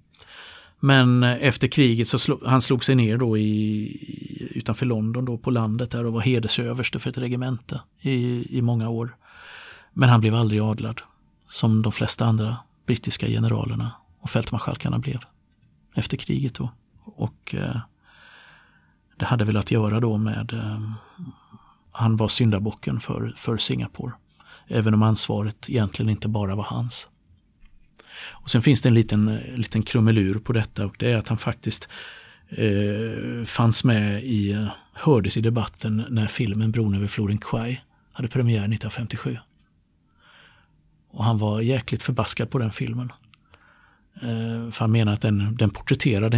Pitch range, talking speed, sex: 110-125 Hz, 150 wpm, male